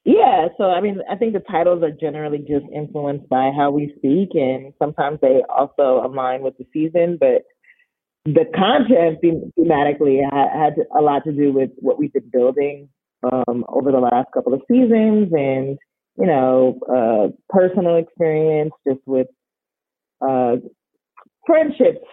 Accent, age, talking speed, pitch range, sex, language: American, 20-39, 150 wpm, 130-165 Hz, female, English